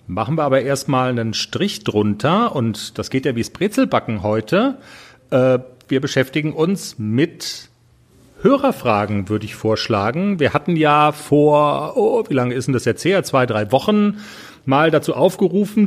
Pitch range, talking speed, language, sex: 125-170 Hz, 155 wpm, German, male